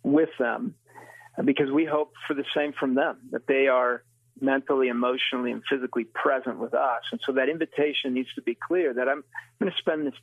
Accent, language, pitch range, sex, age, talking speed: American, English, 125-155 Hz, male, 40-59, 200 wpm